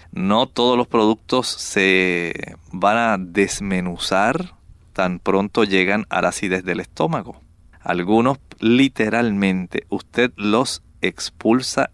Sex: male